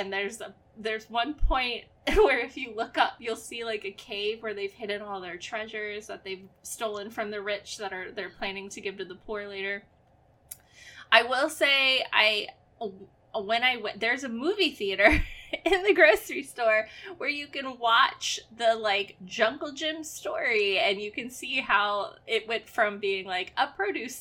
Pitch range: 200-285 Hz